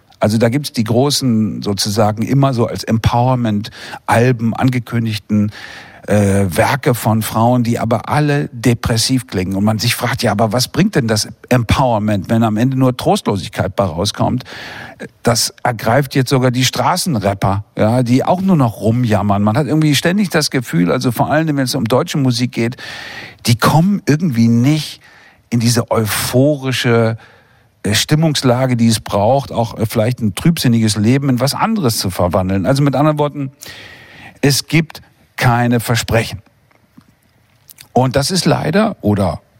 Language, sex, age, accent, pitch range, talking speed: German, male, 50-69, German, 110-140 Hz, 155 wpm